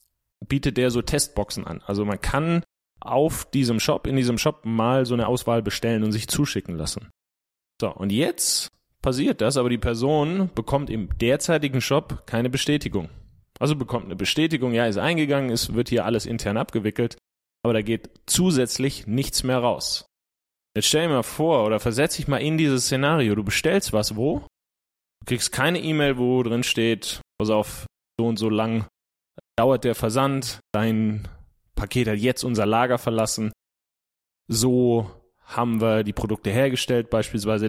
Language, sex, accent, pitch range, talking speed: German, male, German, 110-135 Hz, 165 wpm